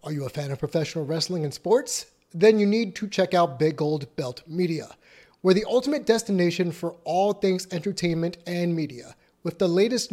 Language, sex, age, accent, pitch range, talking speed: English, male, 30-49, American, 170-220 Hz, 190 wpm